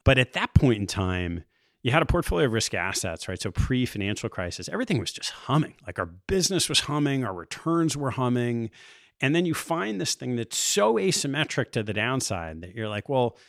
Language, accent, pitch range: English, American, 95-130 Hz